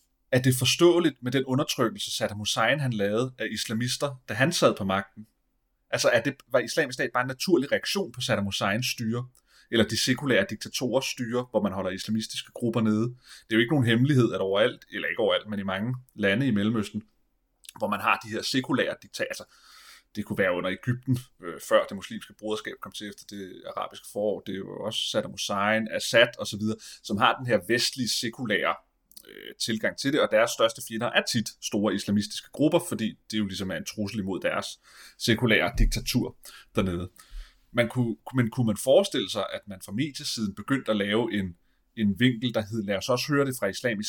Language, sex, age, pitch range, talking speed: Danish, male, 30-49, 100-125 Hz, 195 wpm